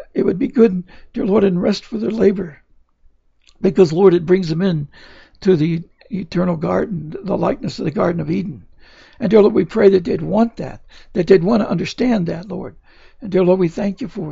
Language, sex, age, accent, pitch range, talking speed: English, male, 60-79, American, 180-210 Hz, 215 wpm